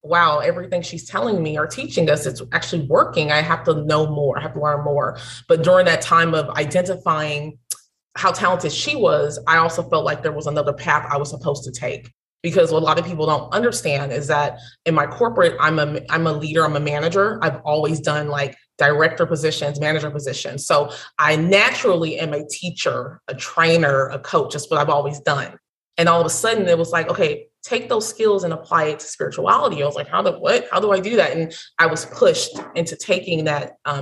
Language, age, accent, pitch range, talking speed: English, 20-39, American, 145-170 Hz, 220 wpm